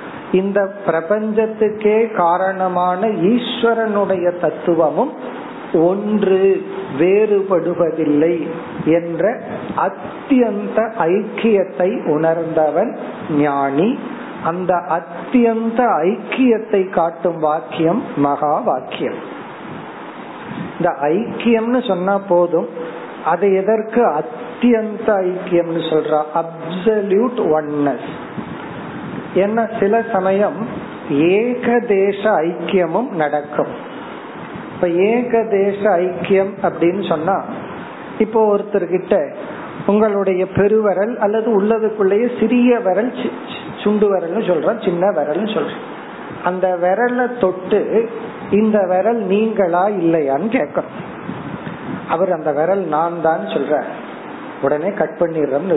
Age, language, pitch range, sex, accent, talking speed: 40-59, Tamil, 170-220 Hz, male, native, 75 wpm